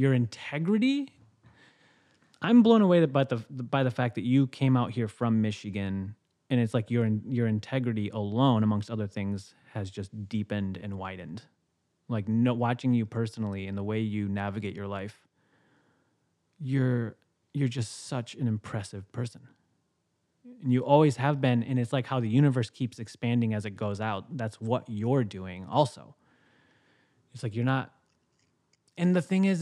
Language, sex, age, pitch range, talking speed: English, male, 20-39, 110-145 Hz, 165 wpm